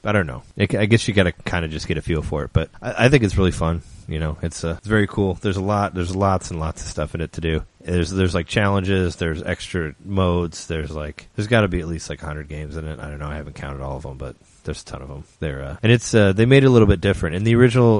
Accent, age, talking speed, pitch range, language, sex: American, 30-49, 300 wpm, 85-105 Hz, English, male